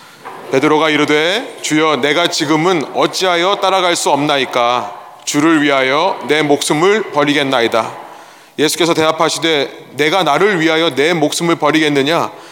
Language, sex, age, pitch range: Korean, male, 30-49, 145-170 Hz